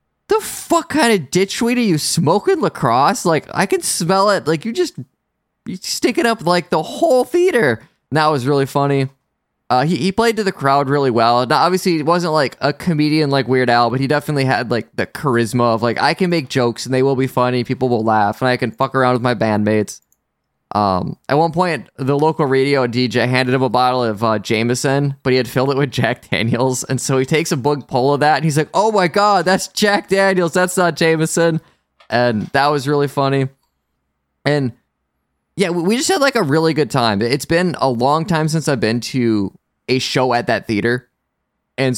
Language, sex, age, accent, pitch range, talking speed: English, male, 20-39, American, 125-170 Hz, 215 wpm